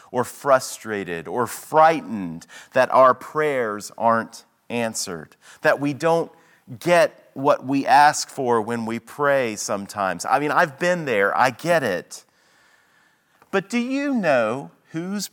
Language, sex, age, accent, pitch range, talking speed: English, male, 40-59, American, 115-165 Hz, 135 wpm